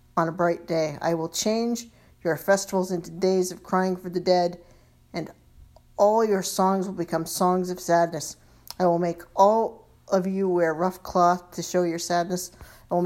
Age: 50-69